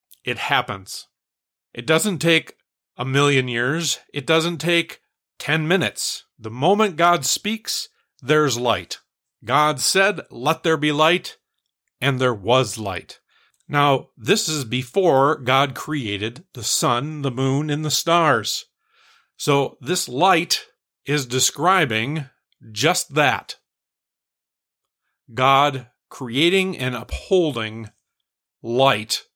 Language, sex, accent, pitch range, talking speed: English, male, American, 125-165 Hz, 110 wpm